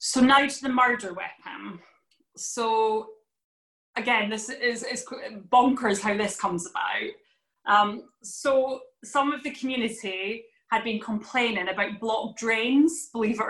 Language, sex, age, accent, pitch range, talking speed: English, female, 20-39, British, 195-255 Hz, 135 wpm